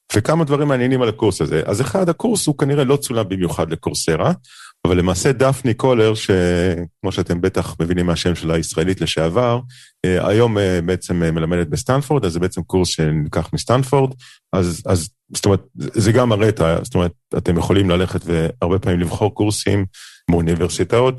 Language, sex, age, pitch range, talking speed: Hebrew, male, 40-59, 90-125 Hz, 155 wpm